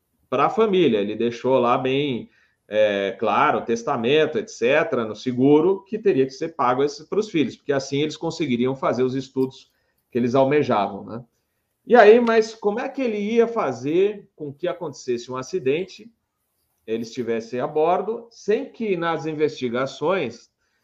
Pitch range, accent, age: 125-195 Hz, Brazilian, 40-59